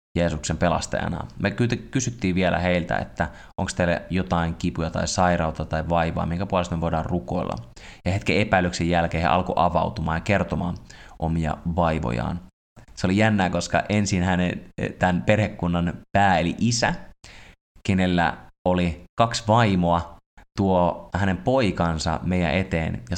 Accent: native